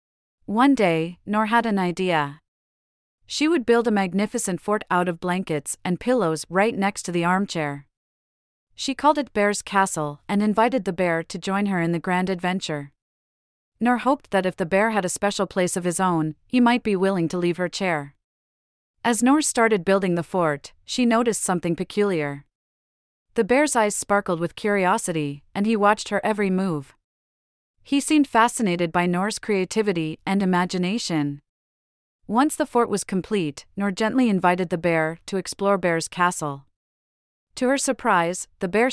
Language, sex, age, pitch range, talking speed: English, female, 30-49, 165-215 Hz, 165 wpm